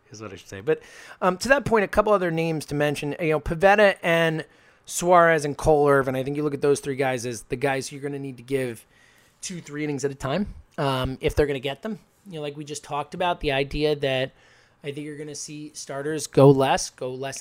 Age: 20-39